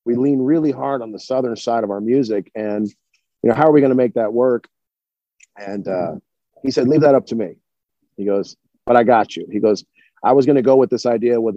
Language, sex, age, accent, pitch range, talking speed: English, male, 40-59, American, 105-130 Hz, 250 wpm